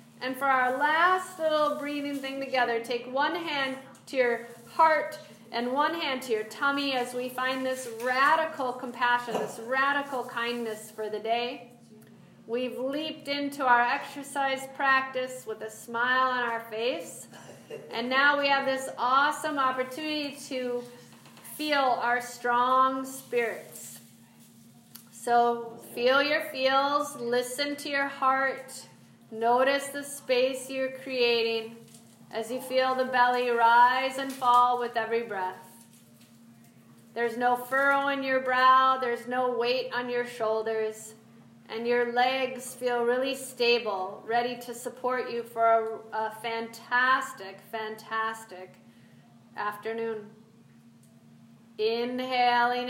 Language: English